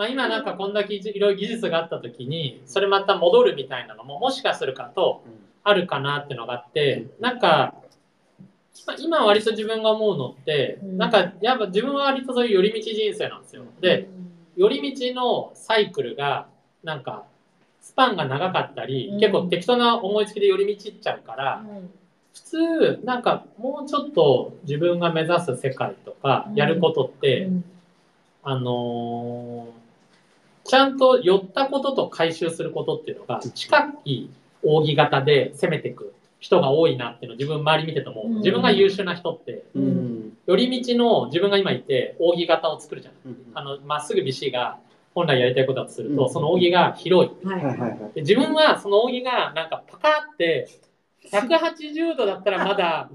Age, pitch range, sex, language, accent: 40-59, 160-265 Hz, male, Japanese, native